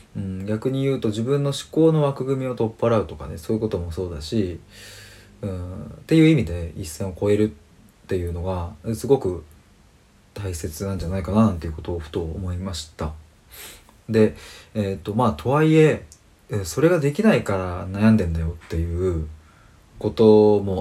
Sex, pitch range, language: male, 85-115 Hz, Japanese